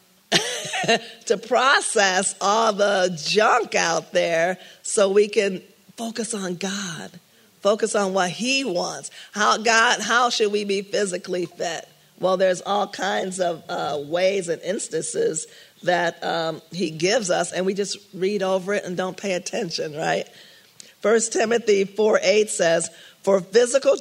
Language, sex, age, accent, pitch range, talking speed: English, female, 40-59, American, 175-210 Hz, 140 wpm